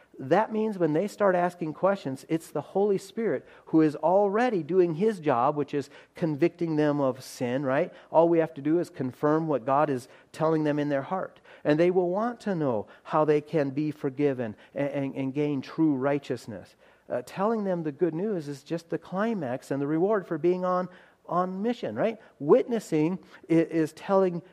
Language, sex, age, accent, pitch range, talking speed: English, male, 40-59, American, 145-190 Hz, 190 wpm